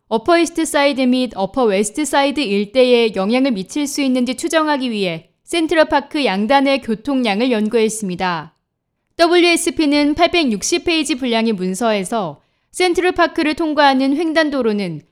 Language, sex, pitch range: Korean, female, 215-290 Hz